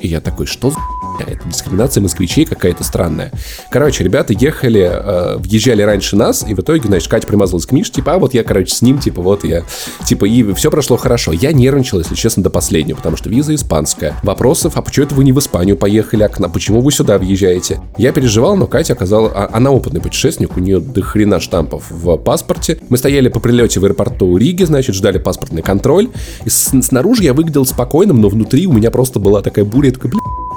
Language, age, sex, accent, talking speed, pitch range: Russian, 20-39, male, native, 210 wpm, 100-135 Hz